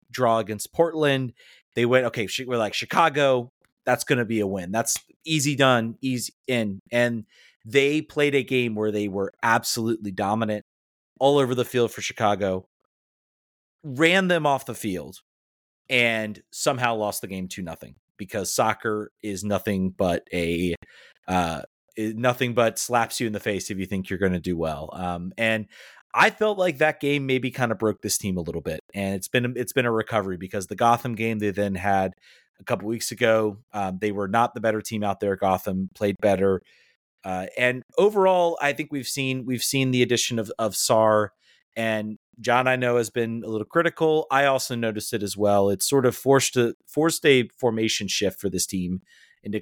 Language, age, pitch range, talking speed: English, 30-49, 100-125 Hz, 190 wpm